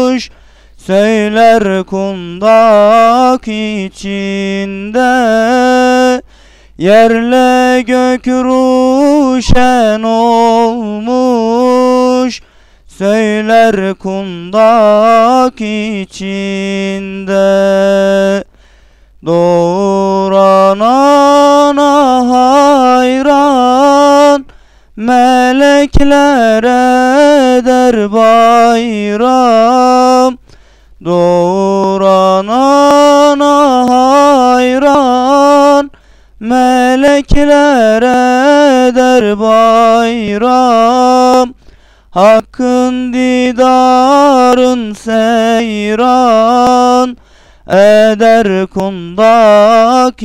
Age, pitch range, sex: 30-49, 210-255 Hz, male